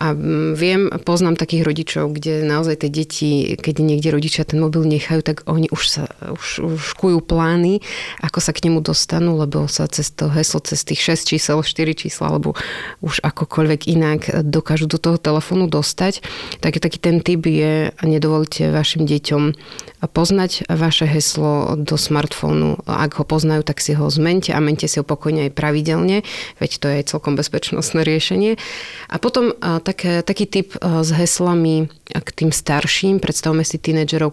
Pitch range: 150-170 Hz